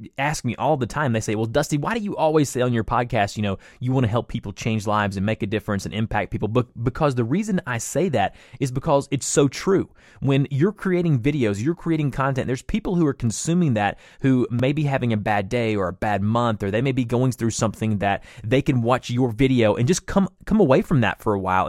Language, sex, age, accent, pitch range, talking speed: English, male, 20-39, American, 110-145 Hz, 250 wpm